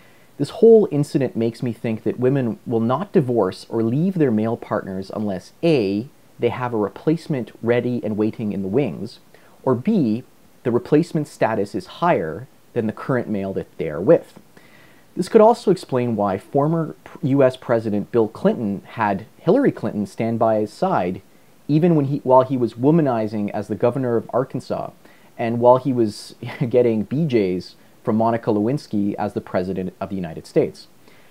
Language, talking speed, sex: English, 170 wpm, male